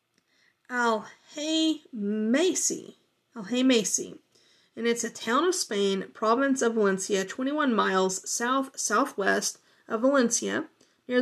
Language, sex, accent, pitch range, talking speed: English, female, American, 200-270 Hz, 95 wpm